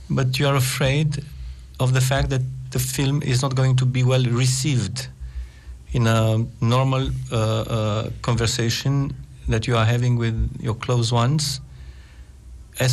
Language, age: Italian, 50-69